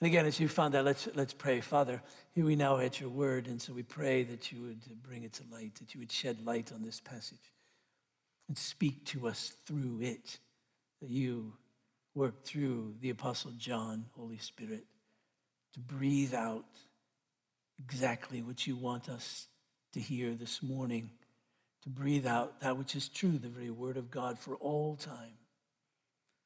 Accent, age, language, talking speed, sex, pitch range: American, 60-79, English, 170 wpm, male, 125-145 Hz